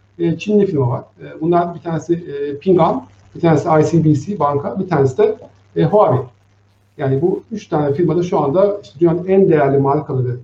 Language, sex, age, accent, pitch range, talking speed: Turkish, male, 60-79, native, 135-175 Hz, 150 wpm